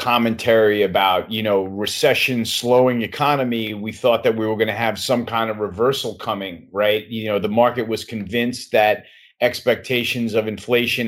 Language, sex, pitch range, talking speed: English, male, 115-135 Hz, 170 wpm